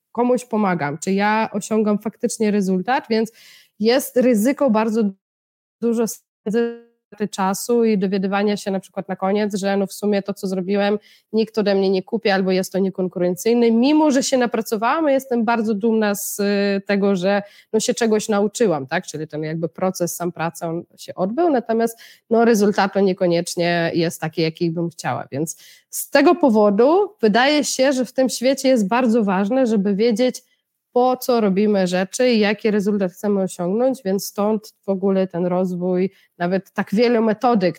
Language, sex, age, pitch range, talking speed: Polish, female, 20-39, 185-235 Hz, 165 wpm